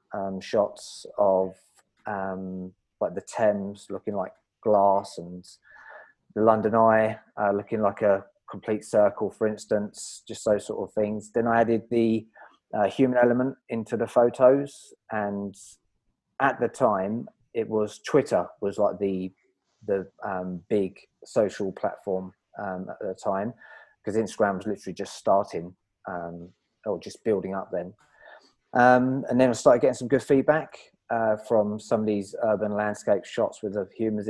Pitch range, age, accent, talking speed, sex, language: 100-115 Hz, 30-49, British, 155 wpm, male, English